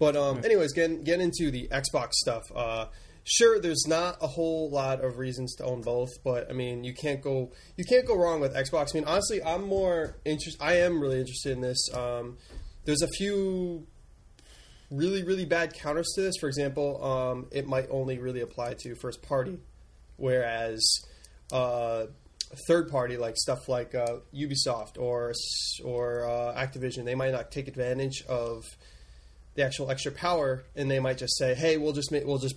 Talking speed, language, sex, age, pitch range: 185 wpm, English, male, 20-39, 120-150 Hz